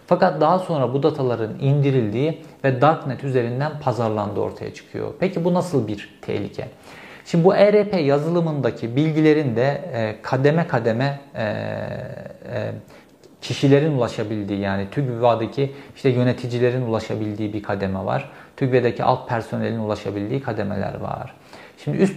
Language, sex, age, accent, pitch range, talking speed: Turkish, male, 50-69, native, 110-140 Hz, 115 wpm